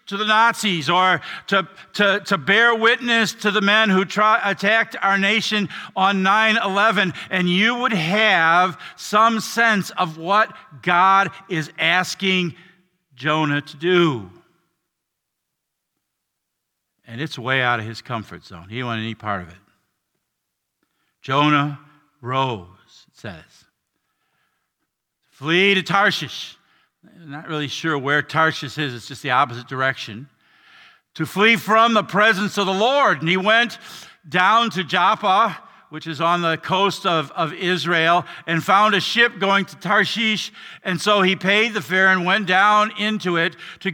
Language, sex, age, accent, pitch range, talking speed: English, male, 50-69, American, 145-205 Hz, 145 wpm